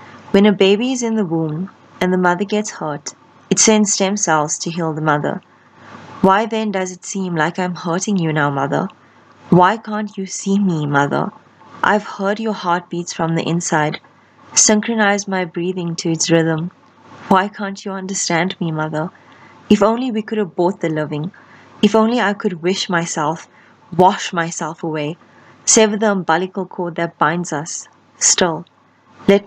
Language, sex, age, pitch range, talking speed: English, female, 20-39, 165-205 Hz, 165 wpm